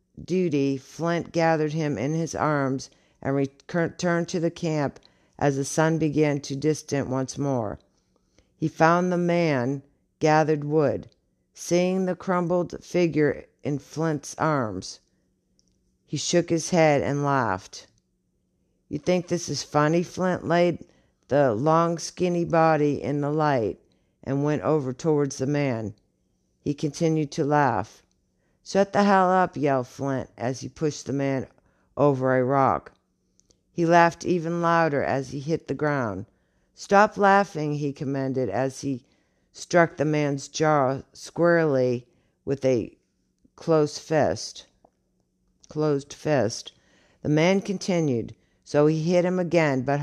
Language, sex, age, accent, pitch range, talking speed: English, female, 50-69, American, 135-170 Hz, 135 wpm